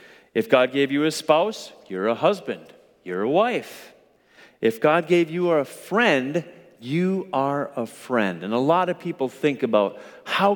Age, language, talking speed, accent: 40-59, English, 170 wpm, American